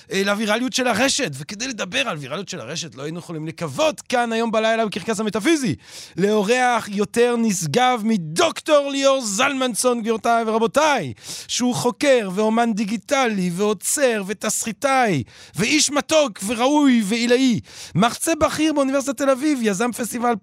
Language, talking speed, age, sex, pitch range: Hebrew, 125 wpm, 30-49, male, 195-245 Hz